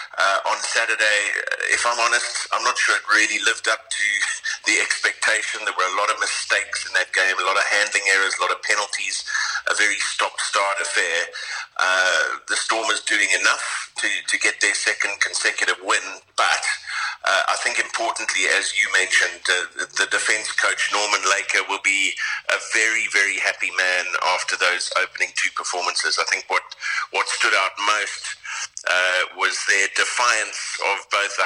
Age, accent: 50-69, British